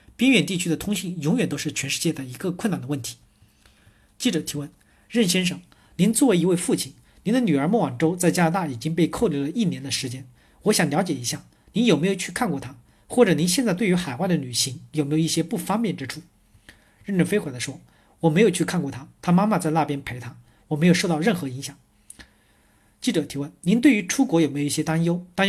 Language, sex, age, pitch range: Chinese, male, 40-59, 145-195 Hz